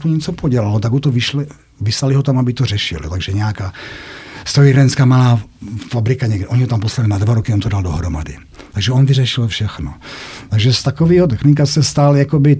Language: Czech